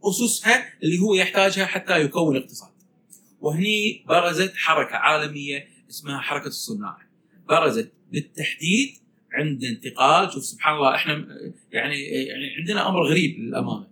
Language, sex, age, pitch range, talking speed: Arabic, male, 40-59, 130-180 Hz, 115 wpm